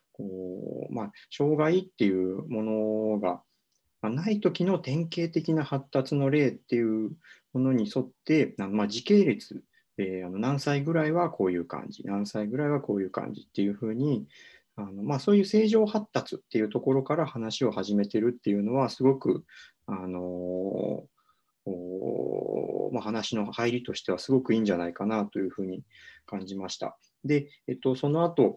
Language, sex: Japanese, male